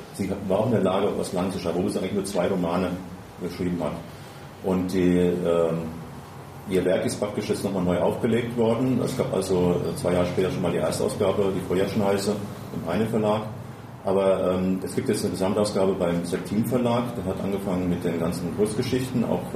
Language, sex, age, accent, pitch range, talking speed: German, male, 40-59, German, 85-105 Hz, 185 wpm